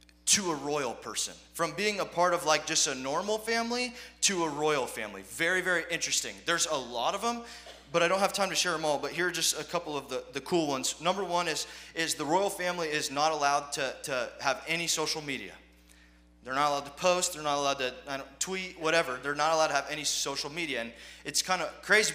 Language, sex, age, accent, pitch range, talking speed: English, male, 20-39, American, 145-175 Hz, 240 wpm